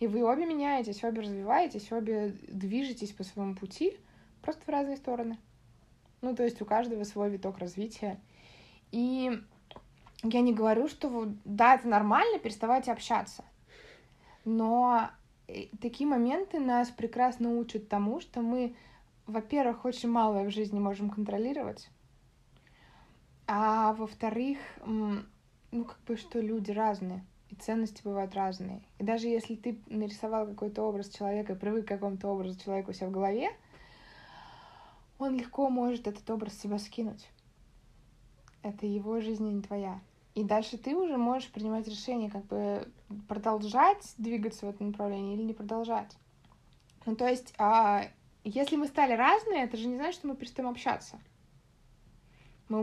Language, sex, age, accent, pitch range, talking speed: Russian, female, 20-39, native, 205-245 Hz, 145 wpm